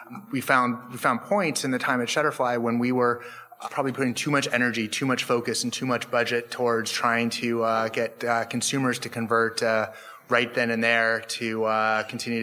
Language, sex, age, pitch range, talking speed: English, male, 30-49, 115-130 Hz, 205 wpm